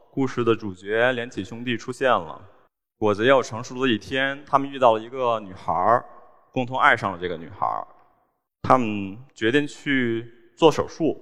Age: 20-39